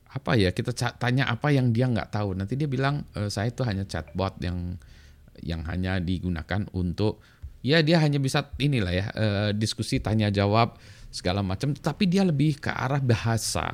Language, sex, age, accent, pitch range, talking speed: Indonesian, male, 20-39, native, 95-120 Hz, 165 wpm